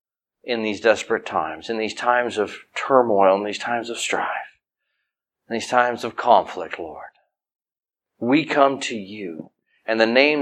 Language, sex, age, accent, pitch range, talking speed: English, male, 40-59, American, 105-125 Hz, 155 wpm